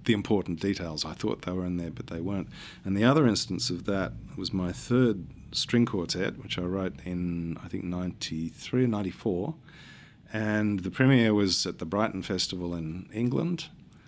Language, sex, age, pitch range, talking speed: English, male, 50-69, 90-115 Hz, 180 wpm